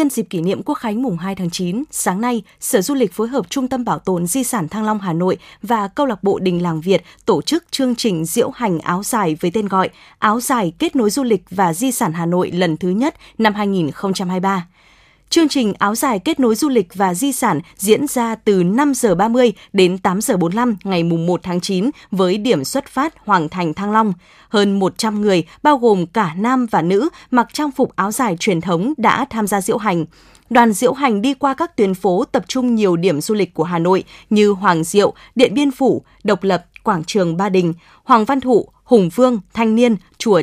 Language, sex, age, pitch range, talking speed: Vietnamese, female, 20-39, 185-245 Hz, 220 wpm